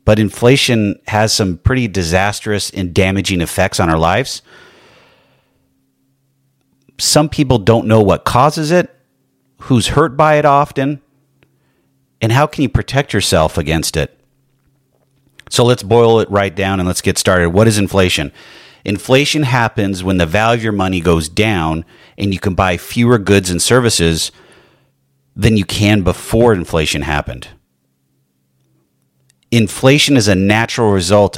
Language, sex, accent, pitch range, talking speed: English, male, American, 90-120 Hz, 140 wpm